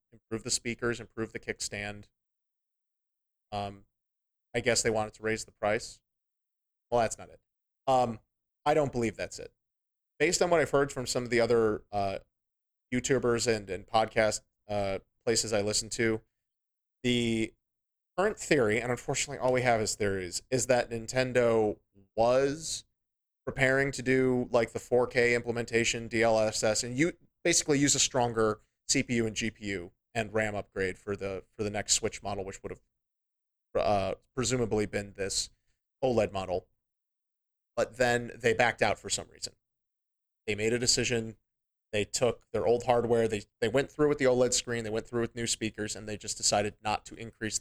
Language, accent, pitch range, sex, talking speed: English, American, 105-125 Hz, male, 170 wpm